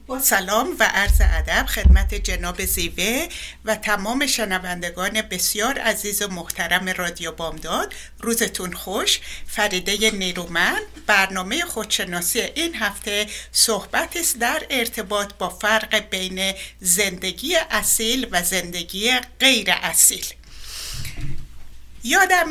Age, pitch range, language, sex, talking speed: 60-79, 180-245 Hz, Persian, female, 100 wpm